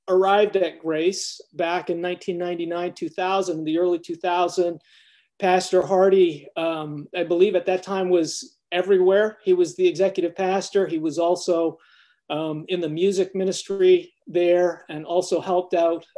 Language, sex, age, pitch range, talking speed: English, male, 40-59, 165-185 Hz, 140 wpm